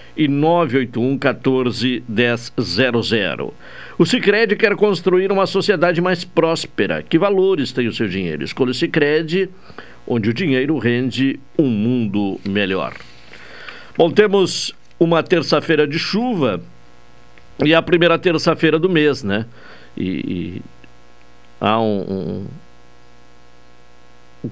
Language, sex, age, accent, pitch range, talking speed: Portuguese, male, 60-79, Brazilian, 105-160 Hz, 115 wpm